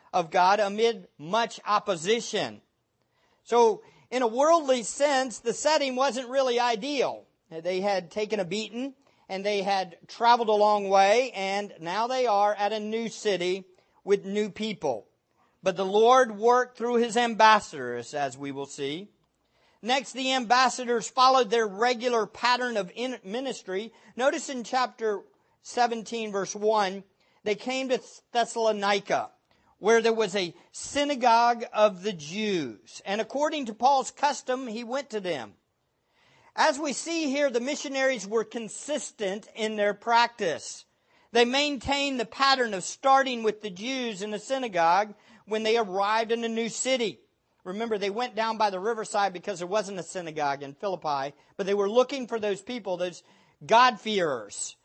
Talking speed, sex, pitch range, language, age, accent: 150 wpm, male, 200-250 Hz, English, 50-69, American